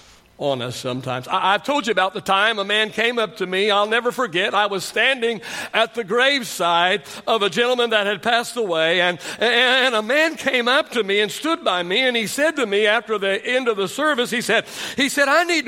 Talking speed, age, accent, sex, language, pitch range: 230 wpm, 60-79, American, male, English, 160-240 Hz